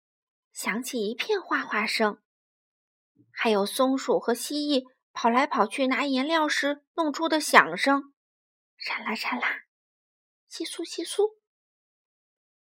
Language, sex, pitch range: Chinese, female, 245-380 Hz